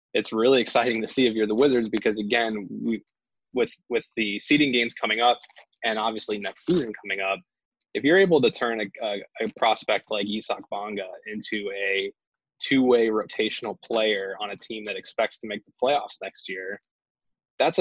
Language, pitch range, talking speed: English, 105-120 Hz, 180 wpm